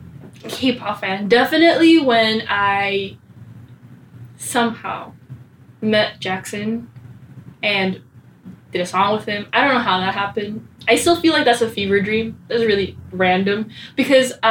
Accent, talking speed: American, 135 wpm